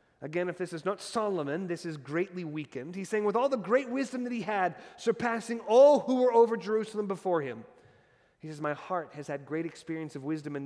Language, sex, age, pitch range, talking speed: English, male, 30-49, 135-190 Hz, 220 wpm